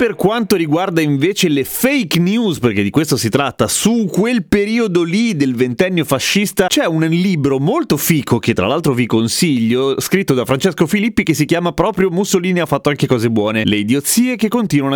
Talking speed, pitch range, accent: 190 wpm, 120-185 Hz, native